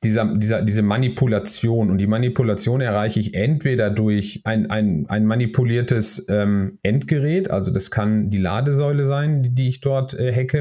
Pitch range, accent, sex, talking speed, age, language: 105-125 Hz, German, male, 160 wpm, 30-49, German